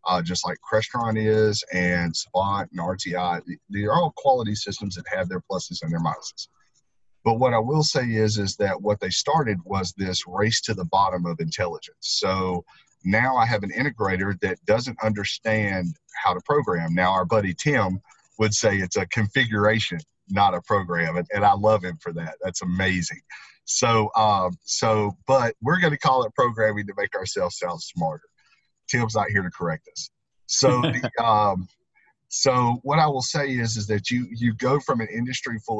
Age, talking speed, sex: 40-59, 185 wpm, male